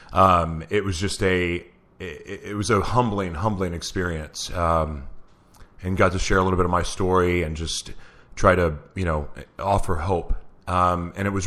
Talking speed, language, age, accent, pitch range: 185 wpm, English, 30-49, American, 85-100 Hz